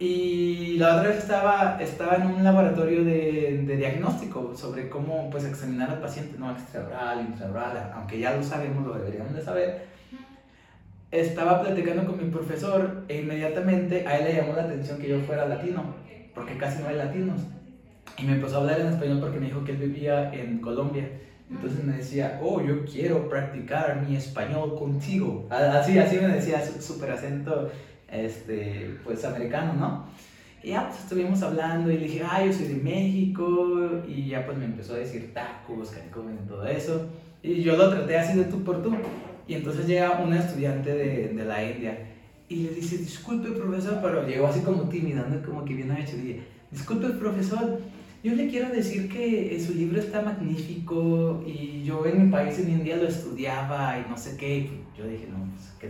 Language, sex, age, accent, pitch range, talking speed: Spanish, male, 30-49, Mexican, 135-175 Hz, 185 wpm